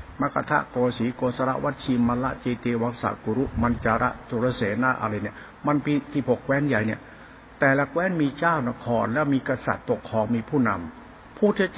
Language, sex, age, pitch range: Thai, male, 60-79, 115-145 Hz